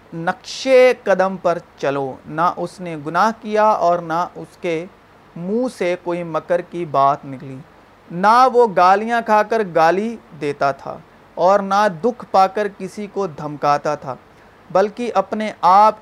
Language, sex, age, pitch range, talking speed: Urdu, male, 40-59, 170-210 Hz, 150 wpm